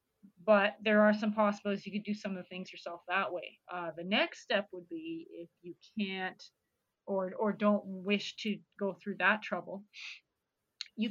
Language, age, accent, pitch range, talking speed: English, 30-49, American, 175-205 Hz, 185 wpm